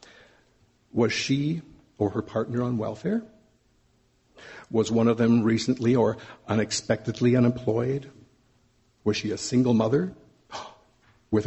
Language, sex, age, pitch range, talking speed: English, male, 60-79, 115-140 Hz, 110 wpm